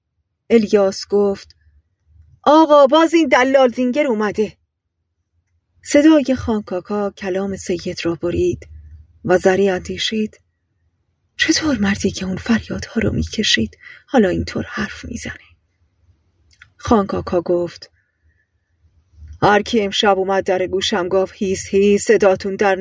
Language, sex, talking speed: Persian, female, 110 wpm